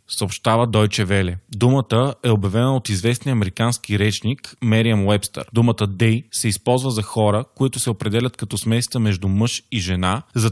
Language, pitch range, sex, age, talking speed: Bulgarian, 110-130 Hz, male, 20-39, 160 wpm